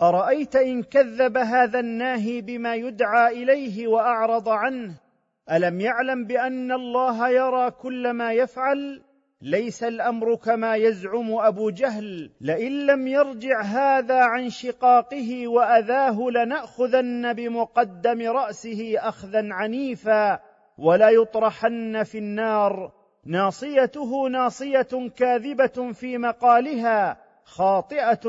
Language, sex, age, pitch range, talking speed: Arabic, male, 40-59, 210-250 Hz, 100 wpm